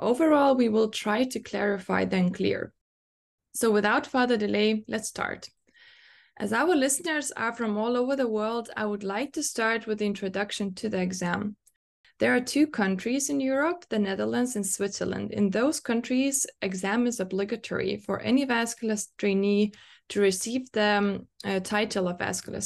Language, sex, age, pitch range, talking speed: English, female, 20-39, 195-250 Hz, 160 wpm